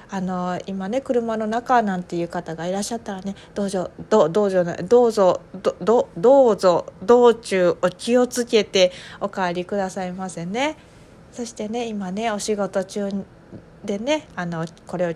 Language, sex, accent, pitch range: Japanese, female, native, 185-235 Hz